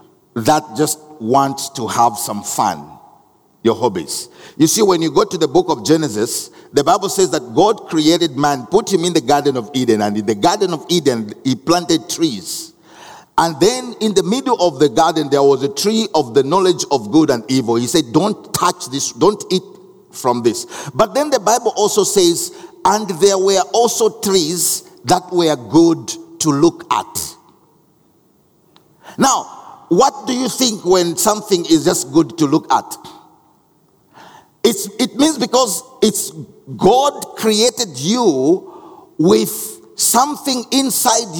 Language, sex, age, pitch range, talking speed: English, male, 50-69, 160-265 Hz, 160 wpm